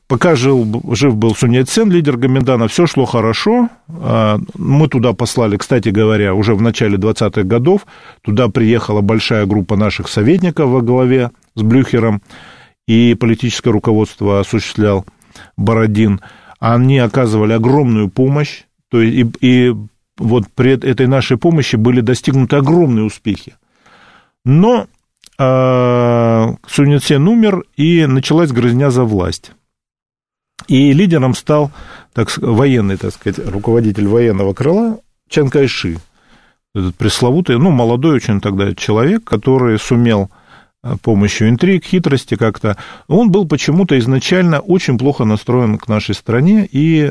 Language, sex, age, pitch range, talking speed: Russian, male, 40-59, 110-145 Hz, 120 wpm